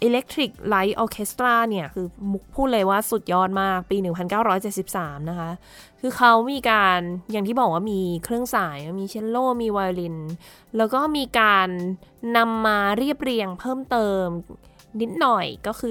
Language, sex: Thai, female